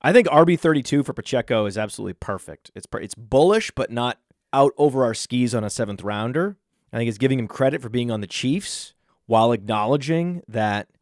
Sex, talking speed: male, 190 wpm